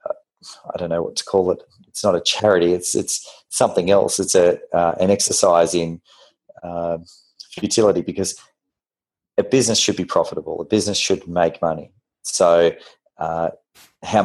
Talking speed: 155 wpm